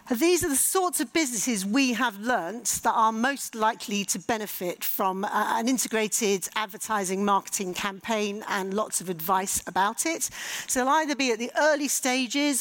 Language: English